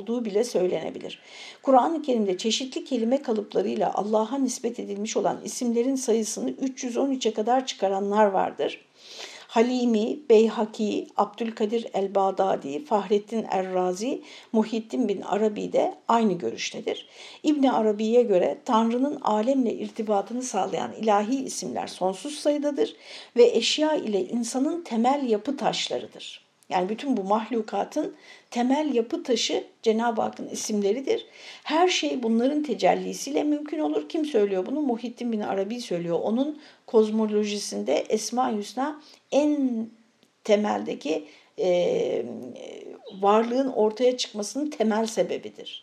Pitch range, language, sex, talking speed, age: 210-280 Hz, Turkish, female, 105 wpm, 60-79